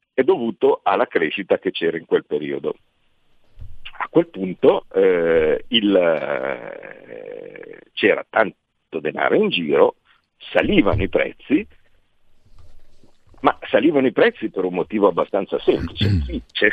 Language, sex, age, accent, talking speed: Italian, male, 50-69, native, 115 wpm